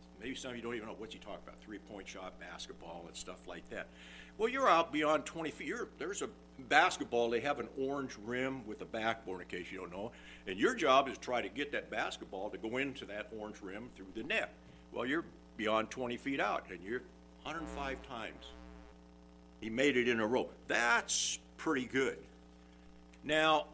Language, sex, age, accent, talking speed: English, male, 60-79, American, 200 wpm